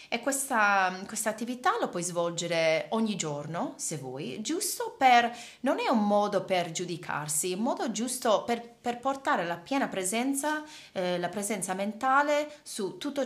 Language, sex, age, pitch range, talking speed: Italian, female, 30-49, 170-235 Hz, 160 wpm